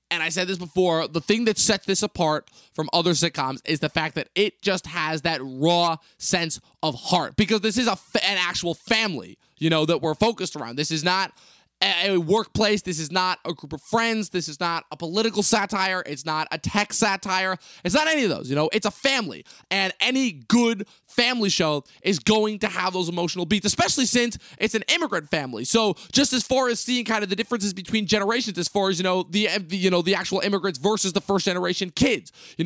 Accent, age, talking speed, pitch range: American, 20-39, 215 wpm, 170-210 Hz